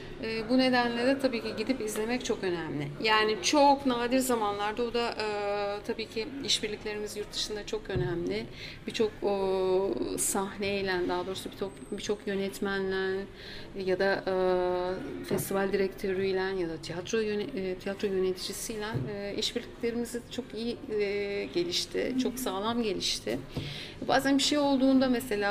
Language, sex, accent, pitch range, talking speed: Turkish, female, native, 190-225 Hz, 125 wpm